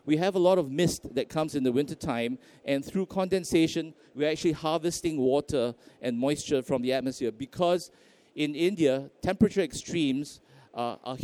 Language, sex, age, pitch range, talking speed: English, male, 50-69, 130-175 Hz, 160 wpm